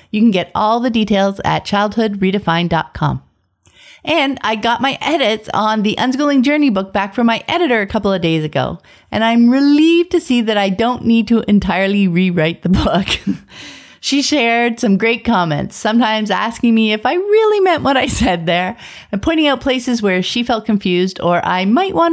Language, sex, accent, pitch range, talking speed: English, female, American, 185-250 Hz, 185 wpm